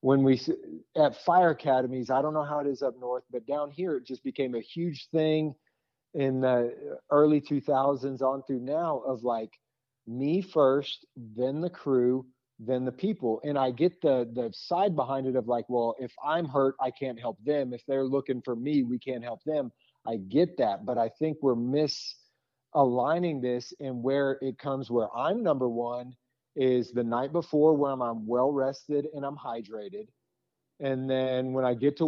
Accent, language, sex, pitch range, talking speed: American, English, male, 125-150 Hz, 185 wpm